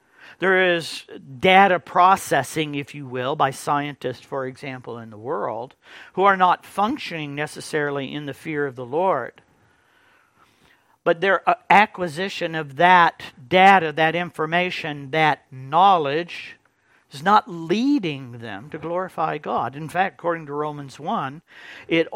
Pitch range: 130-180 Hz